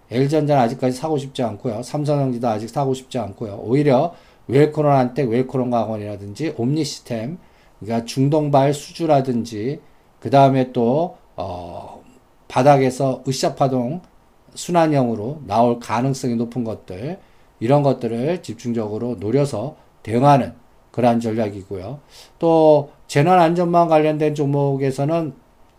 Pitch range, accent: 115-150 Hz, native